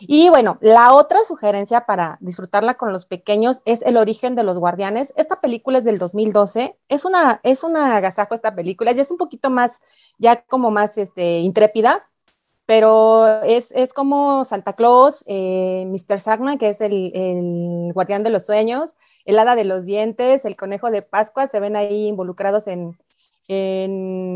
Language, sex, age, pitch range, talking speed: Spanish, female, 30-49, 185-230 Hz, 170 wpm